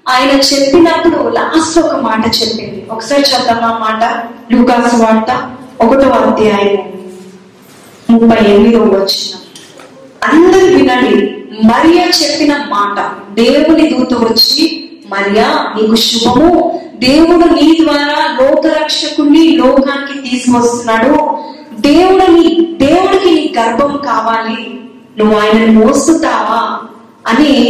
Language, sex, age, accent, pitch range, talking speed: Telugu, female, 20-39, native, 225-305 Hz, 85 wpm